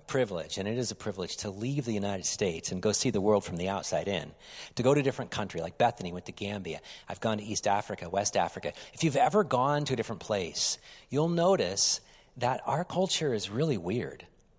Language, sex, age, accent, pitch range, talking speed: English, male, 40-59, American, 105-145 Hz, 220 wpm